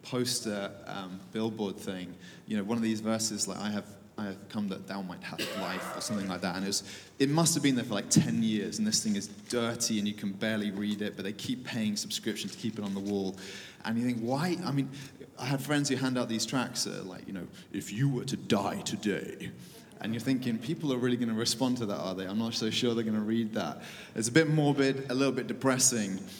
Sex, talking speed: male, 255 wpm